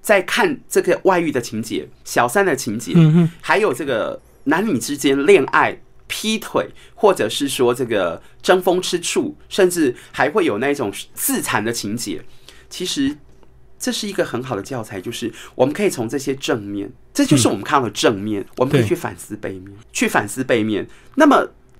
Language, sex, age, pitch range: Chinese, male, 30-49, 125-200 Hz